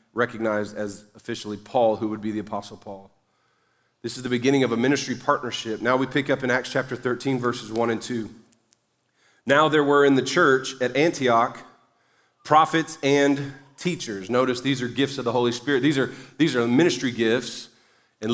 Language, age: English, 40-59